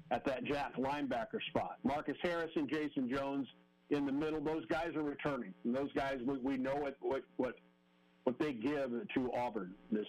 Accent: American